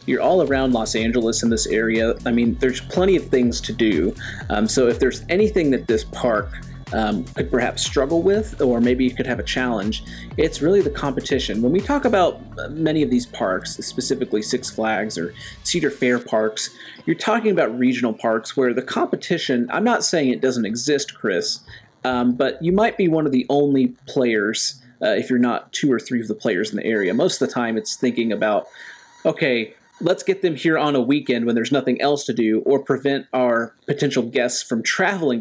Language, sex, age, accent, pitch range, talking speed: English, male, 30-49, American, 115-145 Hz, 205 wpm